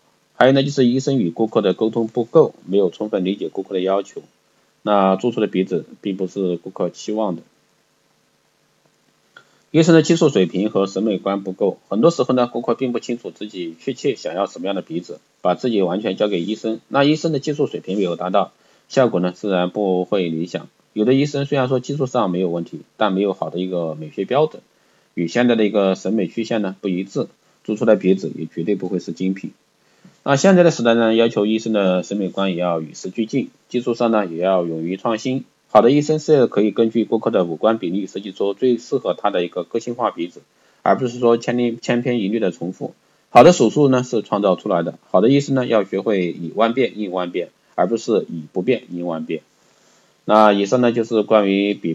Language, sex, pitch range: Chinese, male, 90-120 Hz